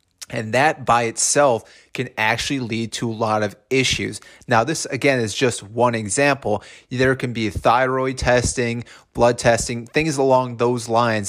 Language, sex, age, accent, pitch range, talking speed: English, male, 30-49, American, 115-135 Hz, 160 wpm